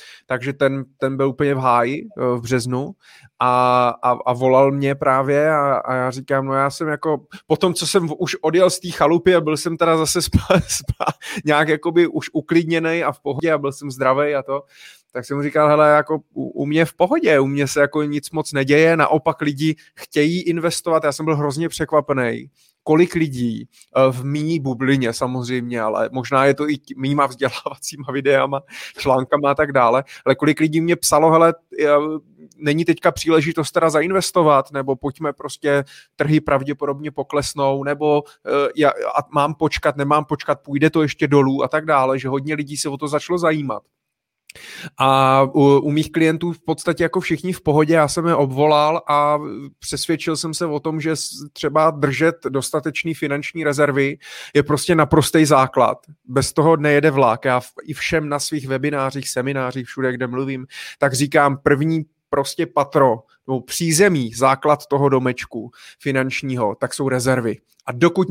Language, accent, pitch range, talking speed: Czech, native, 135-160 Hz, 175 wpm